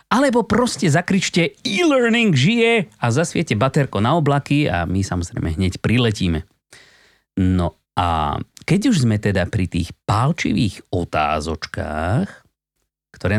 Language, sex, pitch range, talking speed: Slovak, male, 95-145 Hz, 115 wpm